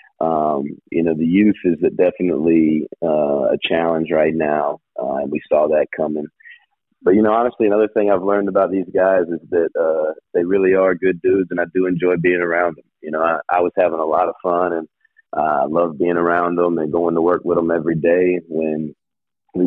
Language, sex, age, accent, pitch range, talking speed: English, male, 30-49, American, 80-90 Hz, 215 wpm